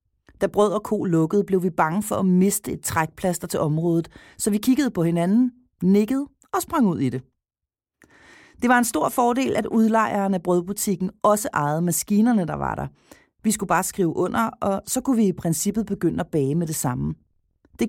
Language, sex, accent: Danish, female, native